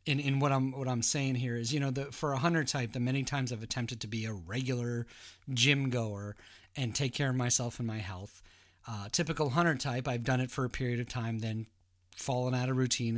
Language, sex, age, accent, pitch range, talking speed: English, male, 30-49, American, 115-150 Hz, 235 wpm